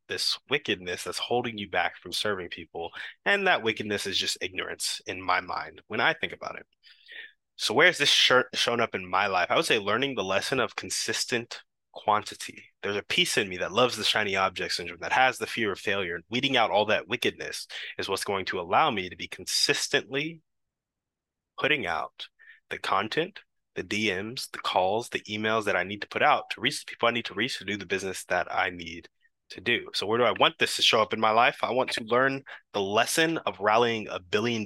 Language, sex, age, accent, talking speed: English, male, 20-39, American, 220 wpm